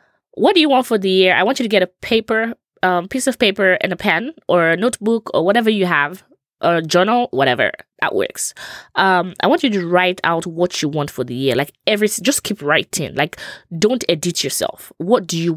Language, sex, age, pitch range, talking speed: English, female, 20-39, 160-230 Hz, 225 wpm